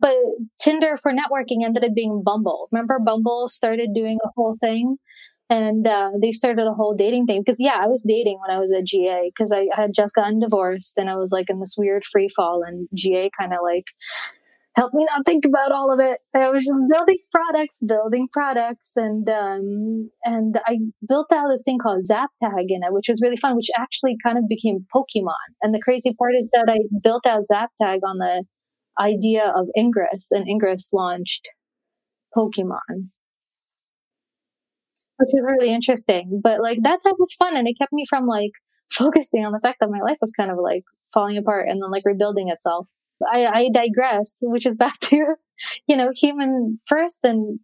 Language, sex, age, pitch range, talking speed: English, female, 20-39, 205-255 Hz, 200 wpm